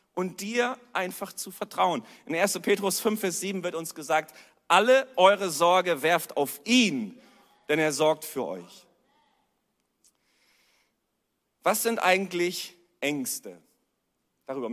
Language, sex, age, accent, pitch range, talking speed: German, male, 40-59, German, 170-240 Hz, 115 wpm